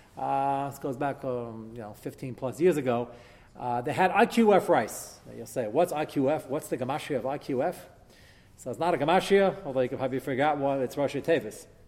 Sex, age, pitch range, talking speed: male, 40-59, 140-195 Hz, 185 wpm